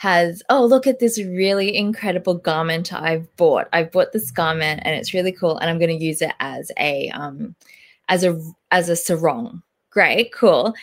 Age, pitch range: 20-39, 170-235 Hz